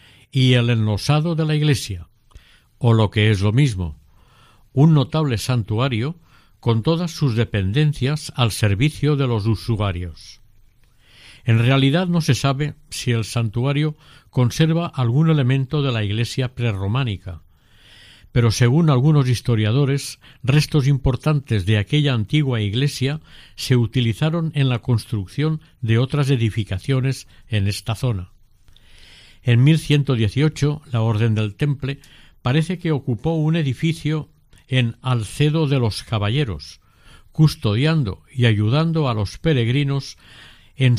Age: 50-69